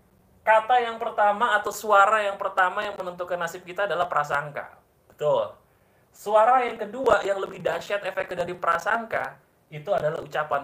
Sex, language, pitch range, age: male, Indonesian, 155-200 Hz, 30-49